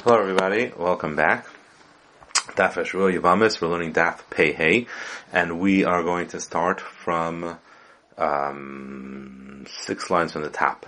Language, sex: English, male